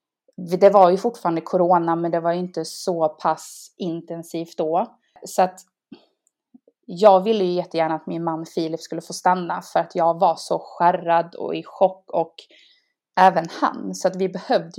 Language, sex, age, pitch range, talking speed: Swedish, female, 20-39, 170-195 Hz, 175 wpm